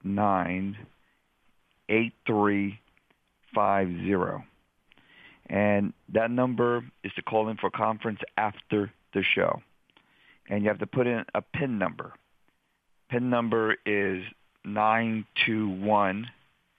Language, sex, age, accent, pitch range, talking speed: English, male, 50-69, American, 95-110 Hz, 115 wpm